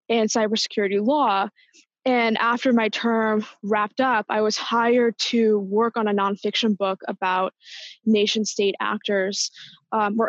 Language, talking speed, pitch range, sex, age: English, 140 wpm, 205-235 Hz, female, 20-39